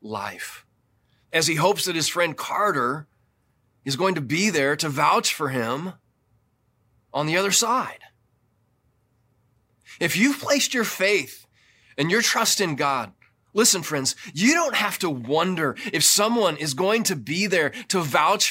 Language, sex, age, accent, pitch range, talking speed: English, male, 20-39, American, 125-190 Hz, 150 wpm